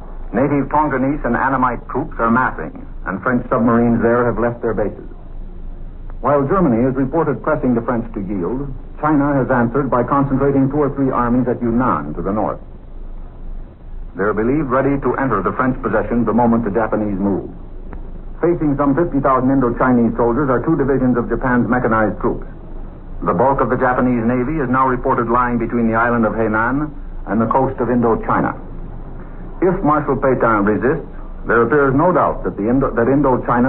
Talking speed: 165 wpm